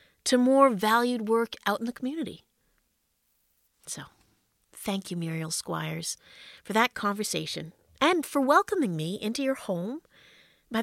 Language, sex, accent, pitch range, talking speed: English, female, American, 175-255 Hz, 135 wpm